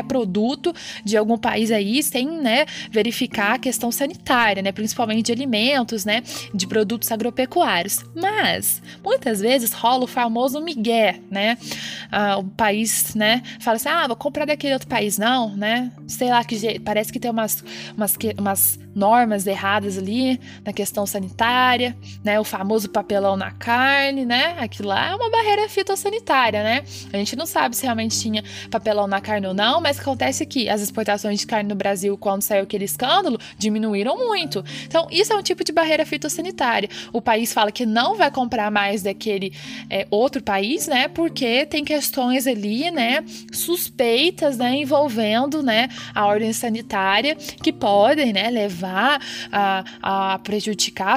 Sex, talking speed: female, 160 wpm